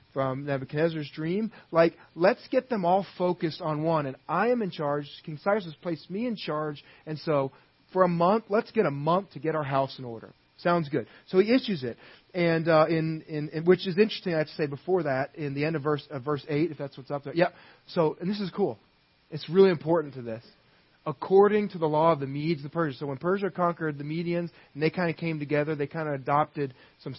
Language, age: English, 30-49